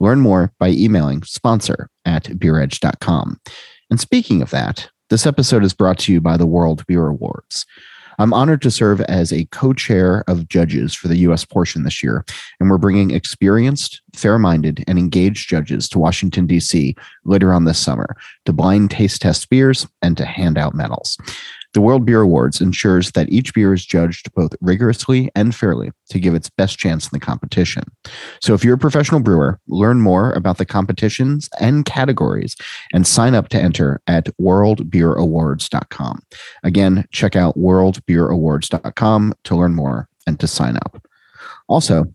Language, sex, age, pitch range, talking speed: English, male, 30-49, 85-110 Hz, 170 wpm